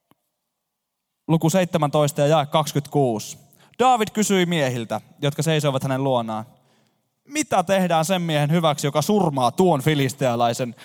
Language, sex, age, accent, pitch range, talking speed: Finnish, male, 20-39, native, 130-175 Hz, 115 wpm